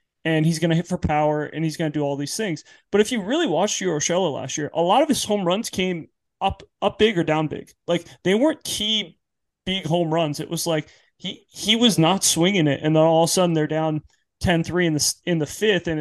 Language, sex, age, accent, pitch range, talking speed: English, male, 30-49, American, 150-180 Hz, 255 wpm